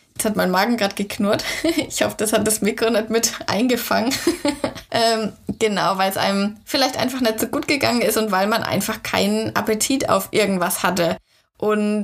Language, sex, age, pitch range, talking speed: German, female, 20-39, 200-230 Hz, 185 wpm